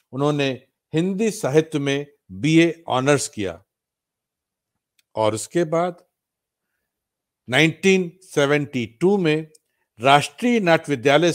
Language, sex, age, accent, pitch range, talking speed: Hindi, male, 60-79, native, 125-160 Hz, 85 wpm